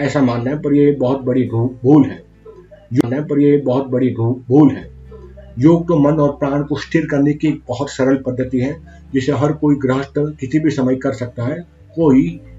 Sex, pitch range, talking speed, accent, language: male, 130-150 Hz, 200 wpm, native, Hindi